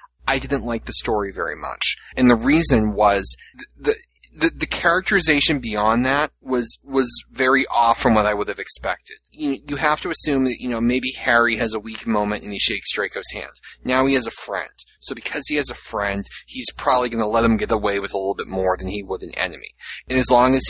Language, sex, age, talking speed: English, male, 30-49, 230 wpm